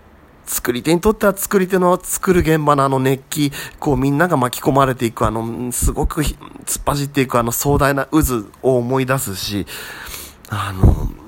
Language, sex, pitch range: Japanese, male, 90-150 Hz